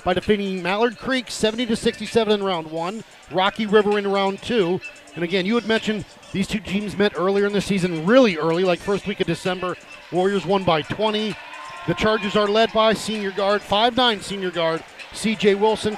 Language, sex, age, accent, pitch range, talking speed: English, male, 40-59, American, 175-210 Hz, 190 wpm